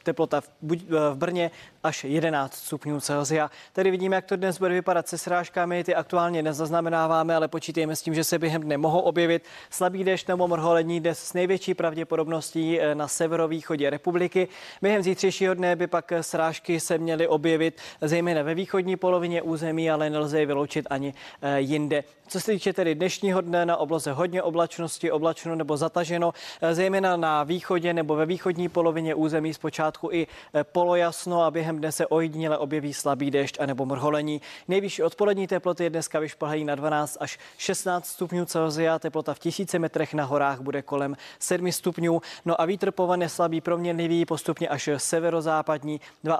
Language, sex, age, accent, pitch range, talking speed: Czech, male, 20-39, native, 150-175 Hz, 160 wpm